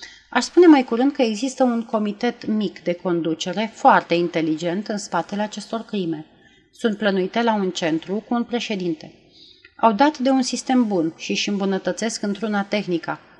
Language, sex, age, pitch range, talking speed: Romanian, female, 30-49, 175-240 Hz, 160 wpm